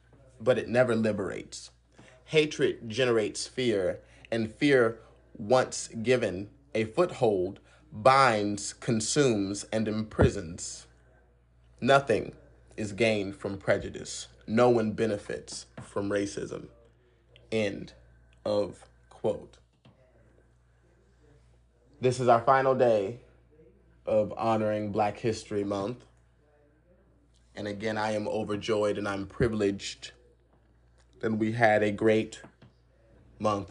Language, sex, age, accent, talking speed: English, male, 20-39, American, 95 wpm